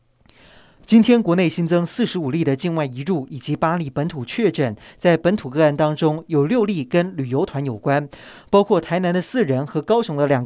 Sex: male